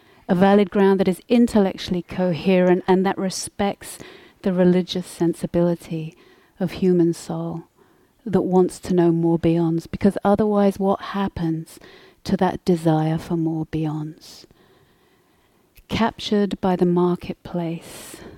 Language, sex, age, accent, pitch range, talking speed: English, female, 40-59, British, 170-205 Hz, 120 wpm